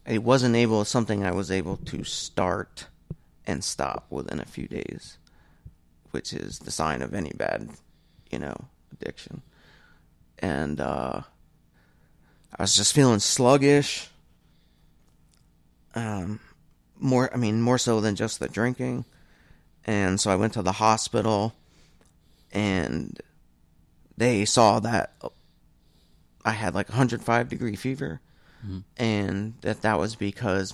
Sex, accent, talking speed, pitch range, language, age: male, American, 130 wpm, 85-125 Hz, English, 30-49